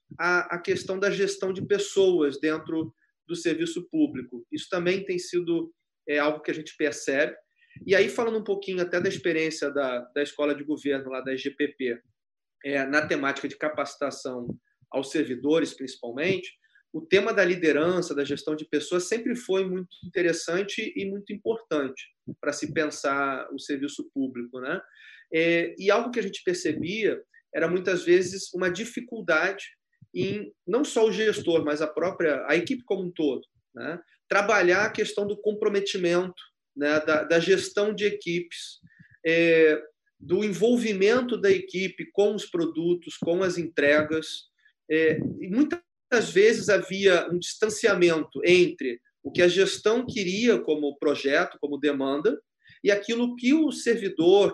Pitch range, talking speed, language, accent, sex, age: 155-220 Hz, 150 wpm, Portuguese, Brazilian, male, 30-49